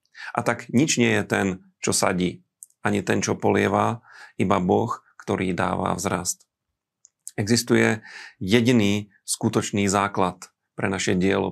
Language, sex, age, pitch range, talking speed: Slovak, male, 40-59, 95-110 Hz, 125 wpm